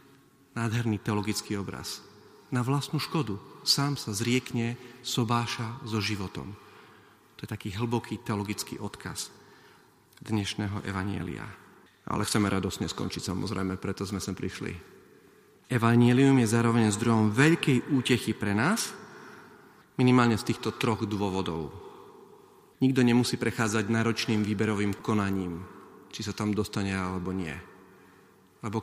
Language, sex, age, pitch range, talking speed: Slovak, male, 40-59, 100-125 Hz, 115 wpm